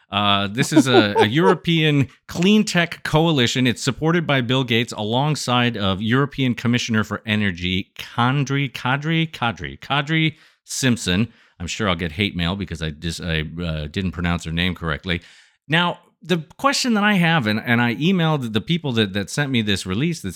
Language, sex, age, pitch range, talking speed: English, male, 40-59, 100-140 Hz, 180 wpm